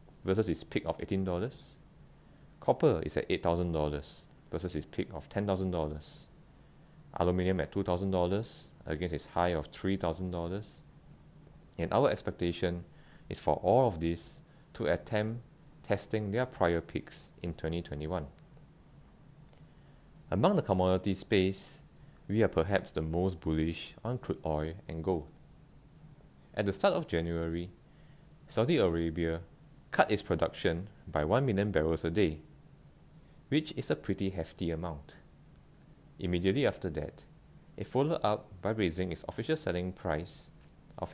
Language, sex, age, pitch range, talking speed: English, male, 30-49, 80-110 Hz, 125 wpm